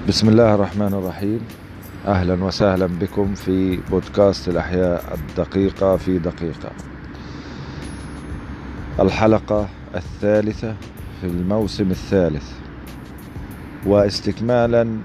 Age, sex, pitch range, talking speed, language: 40-59, male, 95-110 Hz, 75 wpm, Arabic